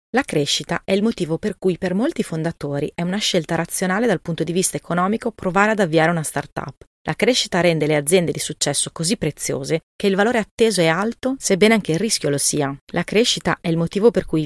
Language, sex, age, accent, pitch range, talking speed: Italian, female, 30-49, native, 155-200 Hz, 215 wpm